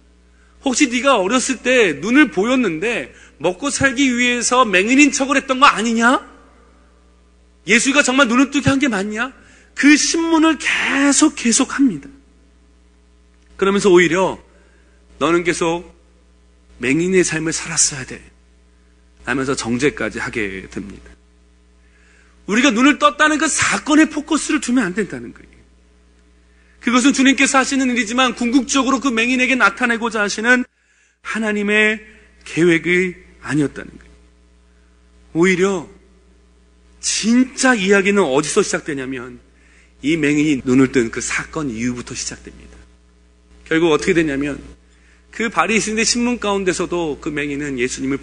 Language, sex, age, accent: Korean, male, 40-59, native